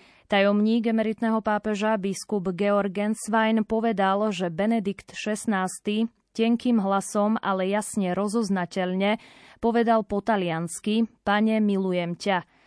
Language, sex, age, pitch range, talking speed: Slovak, female, 20-39, 195-225 Hz, 95 wpm